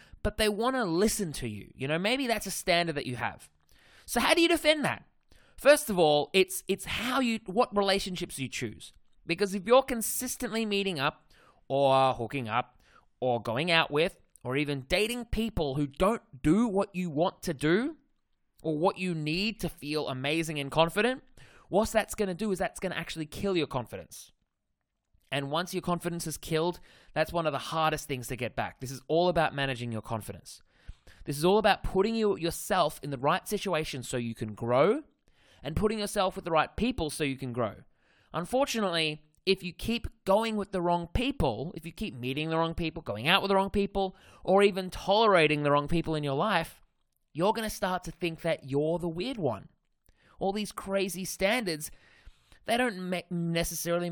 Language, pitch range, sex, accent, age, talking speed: English, 150-200 Hz, male, Australian, 20-39, 195 wpm